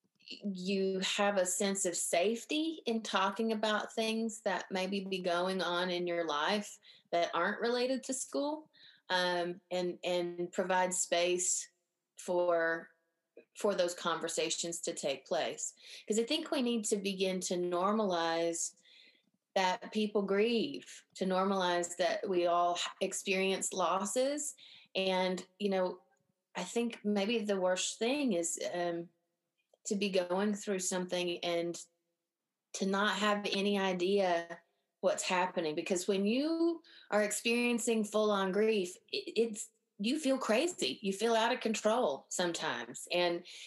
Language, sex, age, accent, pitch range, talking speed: English, female, 30-49, American, 180-225 Hz, 130 wpm